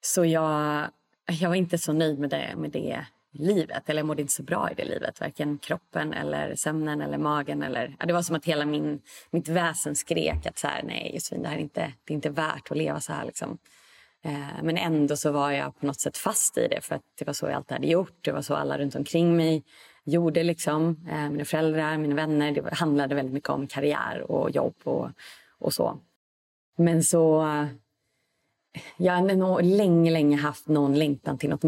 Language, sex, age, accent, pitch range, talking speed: Swedish, female, 30-49, native, 145-170 Hz, 215 wpm